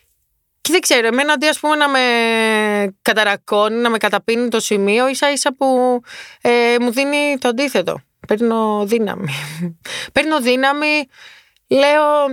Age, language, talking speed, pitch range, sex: 20-39, Greek, 115 wpm, 205-265 Hz, female